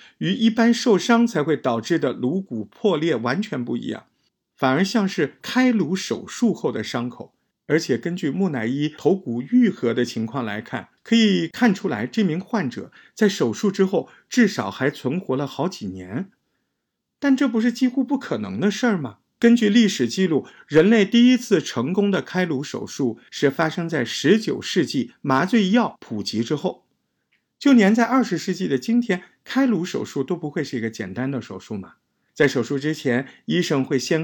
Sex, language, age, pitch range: male, Chinese, 50-69, 130-205 Hz